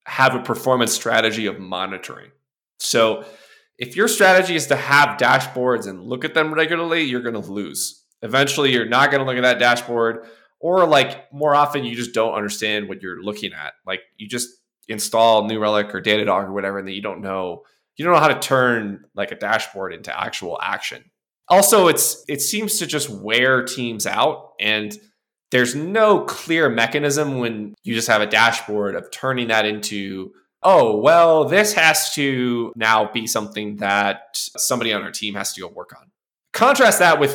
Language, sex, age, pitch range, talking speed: English, male, 20-39, 105-140 Hz, 185 wpm